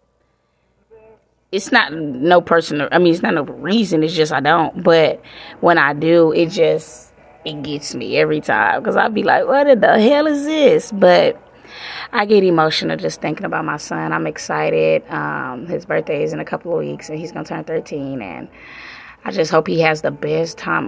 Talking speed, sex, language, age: 200 wpm, female, English, 20-39